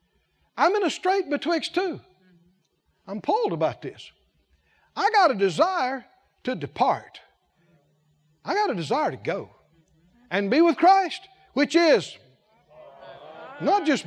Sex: male